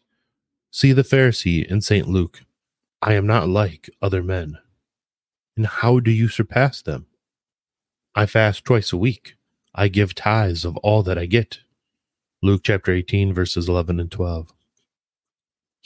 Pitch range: 90-110 Hz